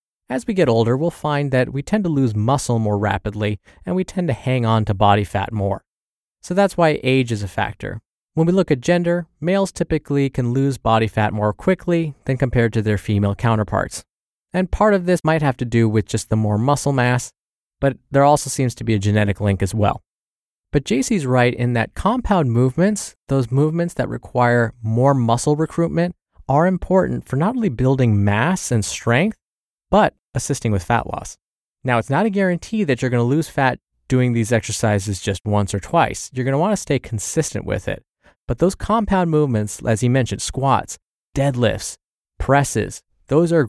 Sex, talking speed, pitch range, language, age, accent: male, 190 wpm, 110-155 Hz, English, 20-39, American